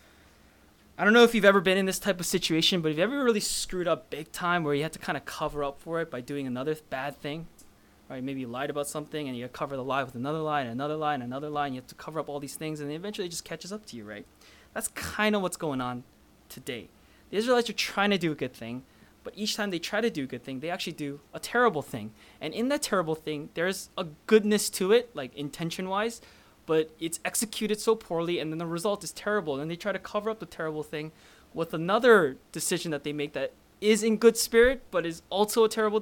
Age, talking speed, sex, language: 20-39, 260 wpm, male, English